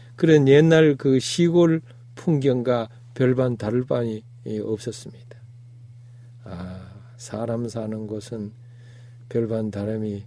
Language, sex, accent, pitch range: Korean, male, native, 120-170 Hz